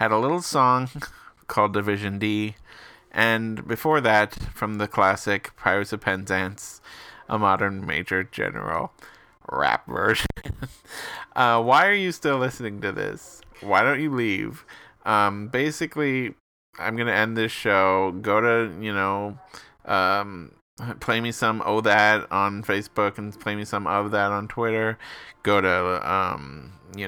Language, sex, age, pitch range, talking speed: English, male, 20-39, 100-115 Hz, 145 wpm